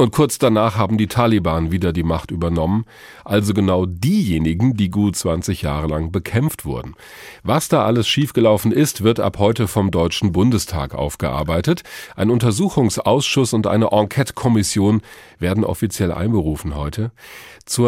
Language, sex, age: German, male, 40-59